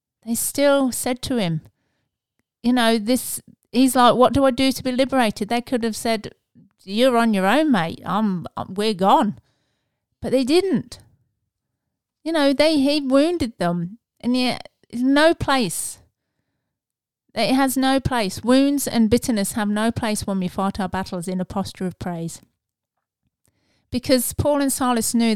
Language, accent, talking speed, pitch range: English, British, 155 wpm, 195-260 Hz